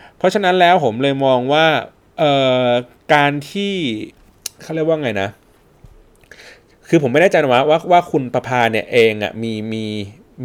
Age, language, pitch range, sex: 30-49, Thai, 110-155 Hz, male